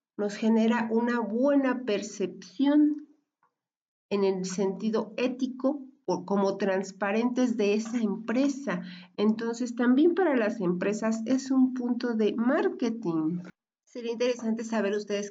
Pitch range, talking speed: 180-220 Hz, 115 wpm